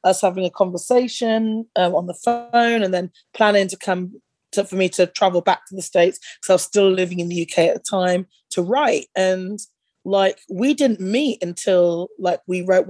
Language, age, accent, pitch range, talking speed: English, 20-39, British, 175-200 Hz, 205 wpm